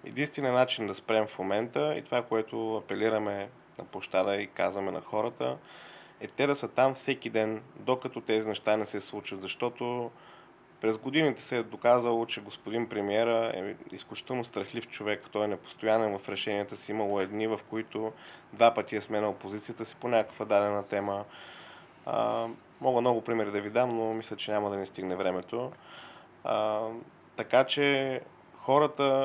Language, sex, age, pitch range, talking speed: Bulgarian, male, 20-39, 105-120 Hz, 160 wpm